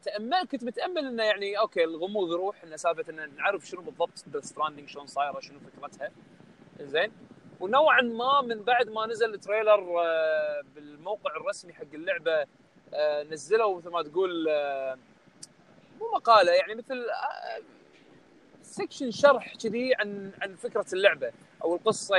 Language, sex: Arabic, male